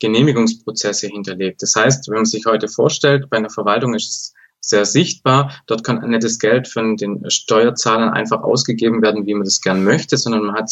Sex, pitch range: male, 105-130 Hz